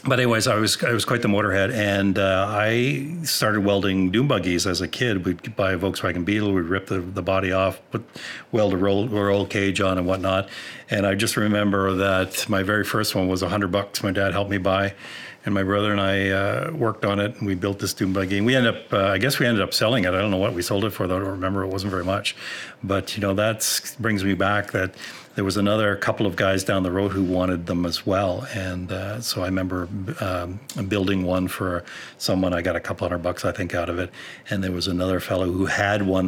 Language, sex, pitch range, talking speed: English, male, 95-105 Hz, 250 wpm